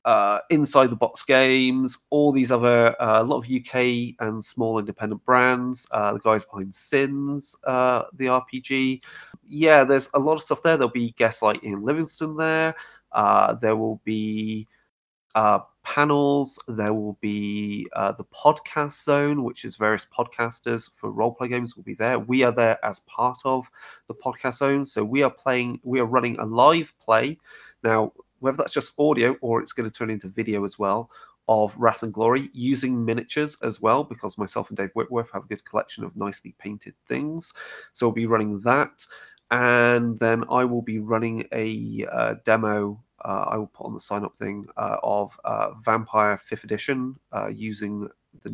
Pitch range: 110-140 Hz